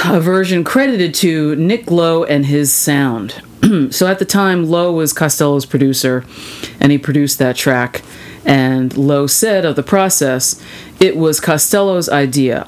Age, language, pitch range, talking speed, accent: 40-59, English, 130-165 Hz, 150 wpm, American